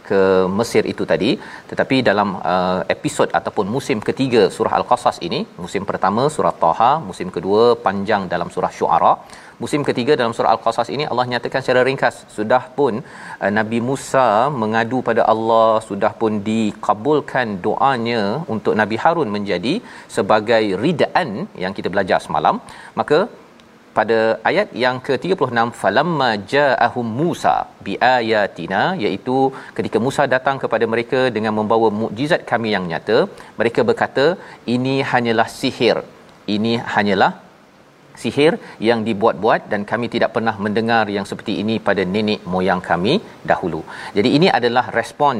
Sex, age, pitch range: male, 40-59, 110-125 Hz